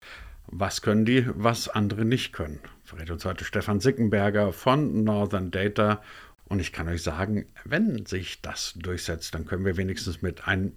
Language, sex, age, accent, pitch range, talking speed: German, male, 50-69, German, 90-120 Hz, 165 wpm